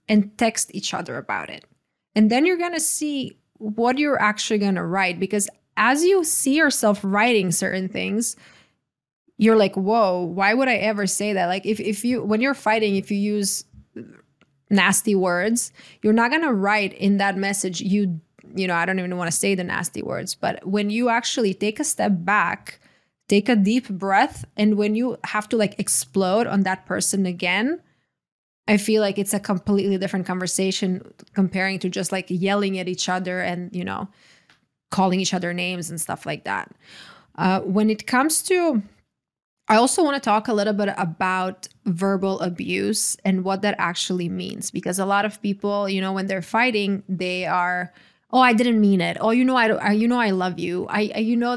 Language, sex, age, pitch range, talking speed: English, female, 20-39, 190-220 Hz, 195 wpm